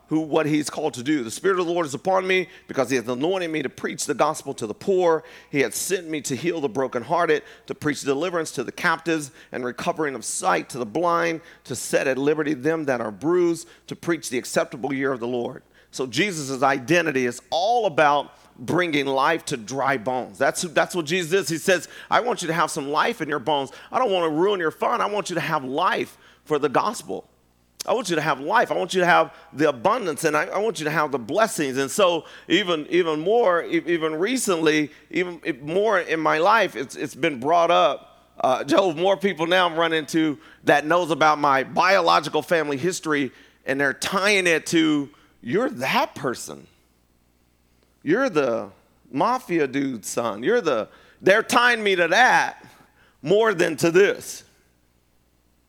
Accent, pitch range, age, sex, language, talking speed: American, 135-175 Hz, 40-59, male, English, 200 wpm